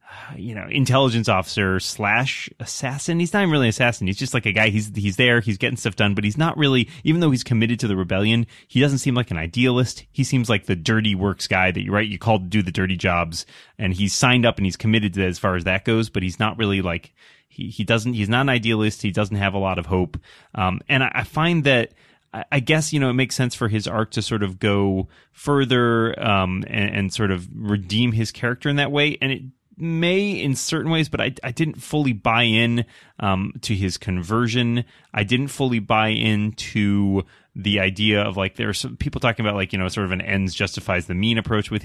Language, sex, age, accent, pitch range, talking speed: English, male, 30-49, American, 95-125 Hz, 240 wpm